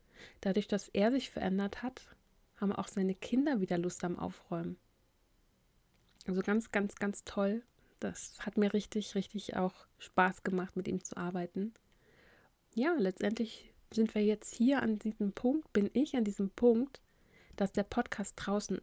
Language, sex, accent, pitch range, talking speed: German, female, German, 185-215 Hz, 155 wpm